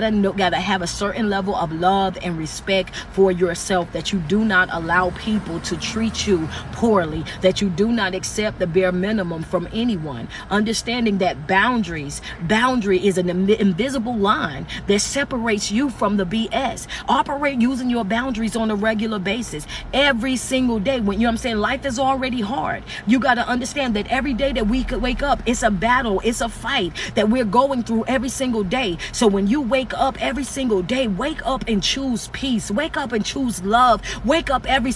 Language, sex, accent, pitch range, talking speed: English, female, American, 200-255 Hz, 200 wpm